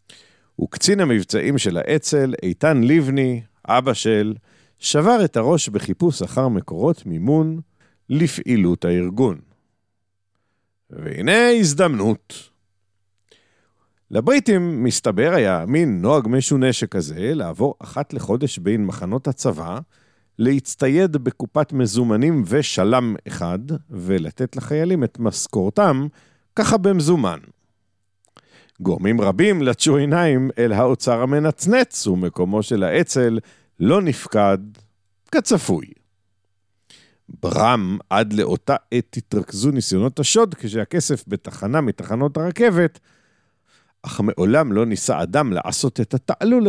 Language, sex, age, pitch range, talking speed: Hebrew, male, 50-69, 95-145 Hz, 95 wpm